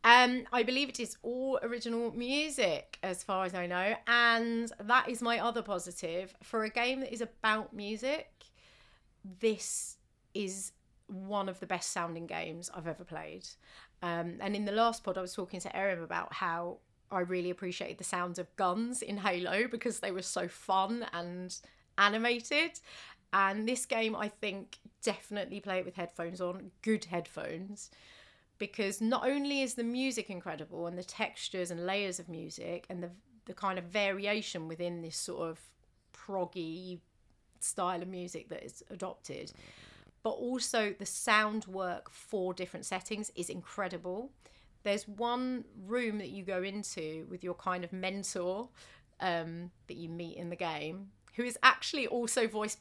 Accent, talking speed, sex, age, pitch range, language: British, 165 wpm, female, 30-49, 180-230 Hz, English